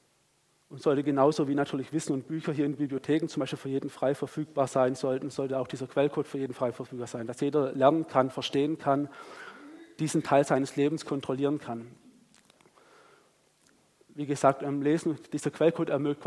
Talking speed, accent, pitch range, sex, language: 175 wpm, German, 135-155 Hz, male, German